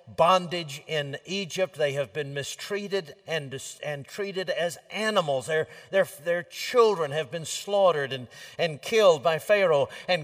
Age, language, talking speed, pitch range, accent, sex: 60-79, English, 145 wpm, 140-190 Hz, American, male